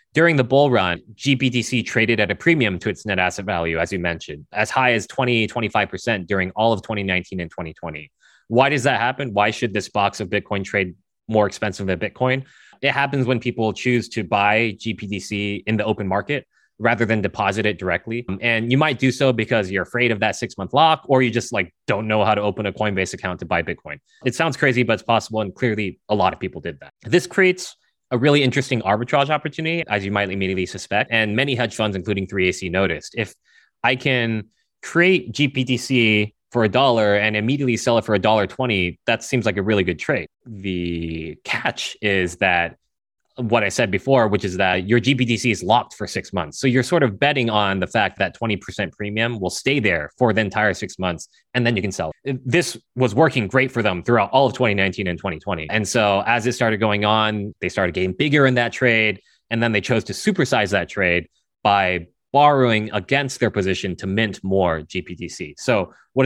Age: 20-39